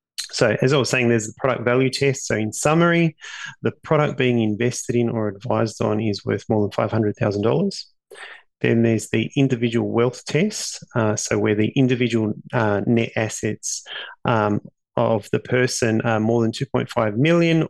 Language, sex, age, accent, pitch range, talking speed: English, male, 30-49, Australian, 110-130 Hz, 165 wpm